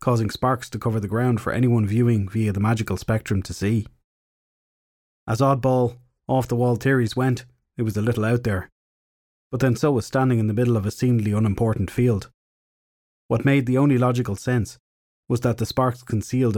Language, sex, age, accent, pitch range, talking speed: English, male, 30-49, Irish, 105-125 Hz, 180 wpm